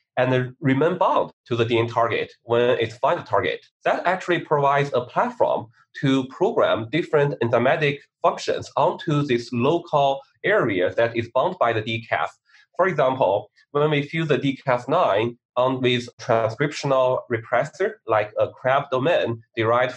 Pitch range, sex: 115-150 Hz, male